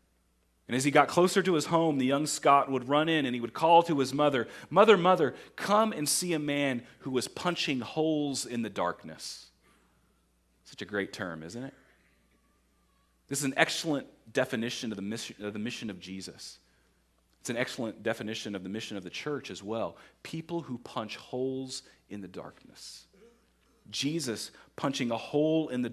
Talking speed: 175 wpm